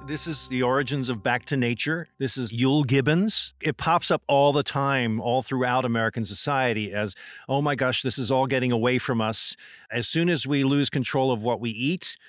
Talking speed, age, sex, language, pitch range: 210 wpm, 50-69, male, English, 115-140 Hz